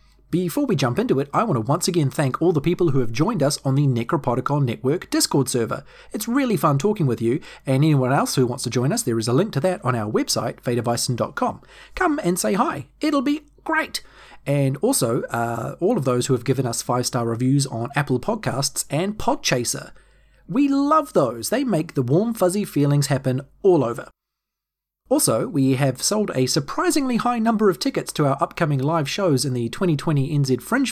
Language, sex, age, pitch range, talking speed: English, male, 30-49, 130-180 Hz, 205 wpm